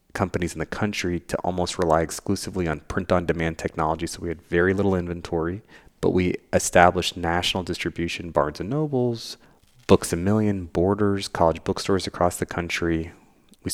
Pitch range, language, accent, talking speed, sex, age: 80-95 Hz, English, American, 160 wpm, male, 30-49